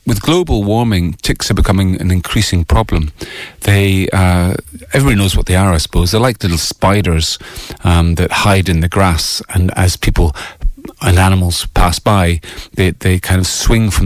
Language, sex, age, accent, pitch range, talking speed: English, male, 40-59, British, 90-105 Hz, 175 wpm